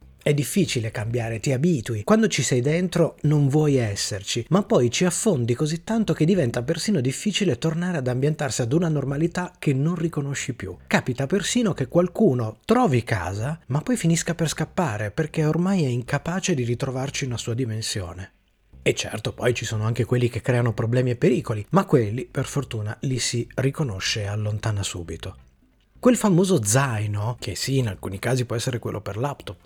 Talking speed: 175 wpm